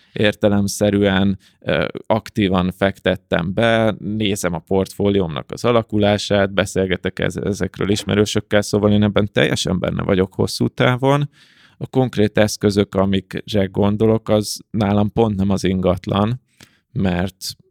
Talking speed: 110 wpm